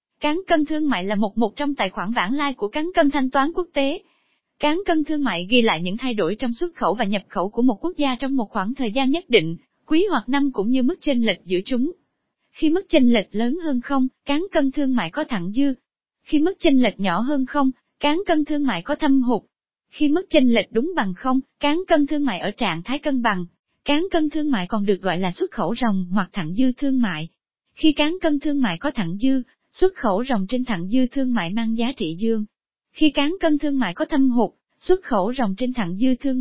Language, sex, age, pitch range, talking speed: Vietnamese, female, 20-39, 220-295 Hz, 245 wpm